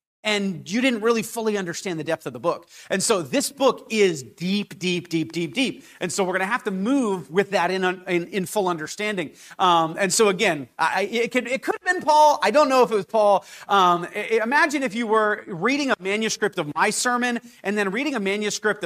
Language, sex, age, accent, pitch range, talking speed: English, male, 30-49, American, 175-220 Hz, 230 wpm